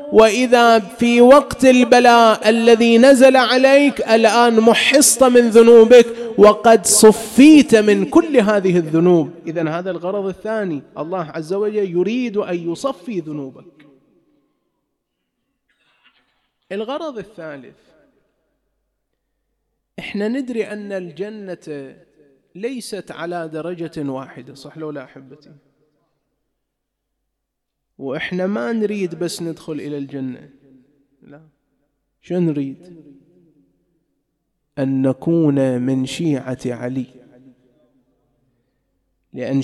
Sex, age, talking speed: male, 30-49, 85 wpm